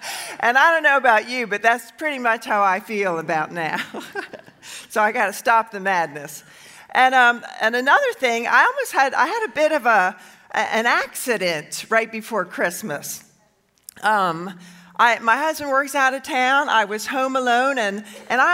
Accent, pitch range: American, 205-275 Hz